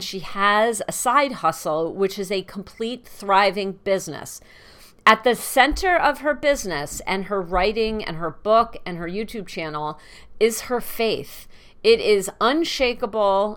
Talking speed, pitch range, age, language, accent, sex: 145 wpm, 185-255 Hz, 40-59, English, American, female